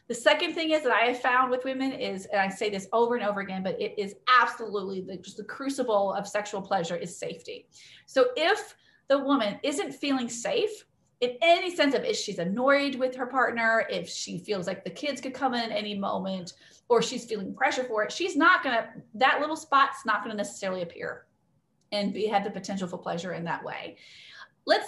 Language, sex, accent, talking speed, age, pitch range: English, female, American, 210 wpm, 30-49, 195-270 Hz